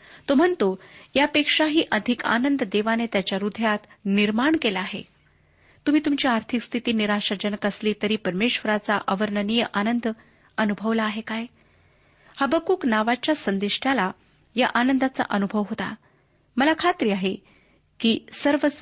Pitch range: 205-245 Hz